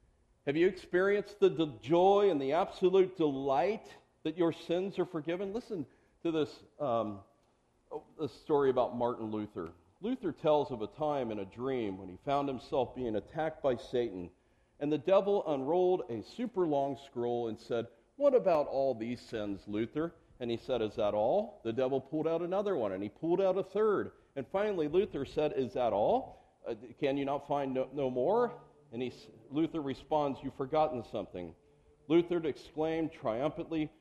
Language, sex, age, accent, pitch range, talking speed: English, male, 50-69, American, 115-160 Hz, 170 wpm